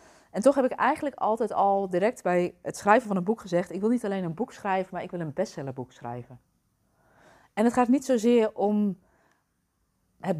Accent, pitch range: Dutch, 170-215 Hz